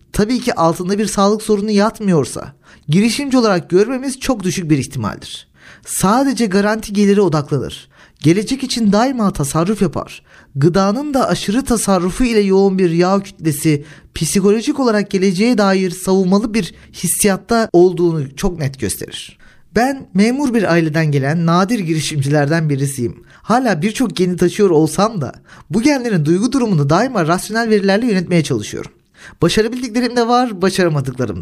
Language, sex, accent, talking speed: Turkish, male, native, 135 wpm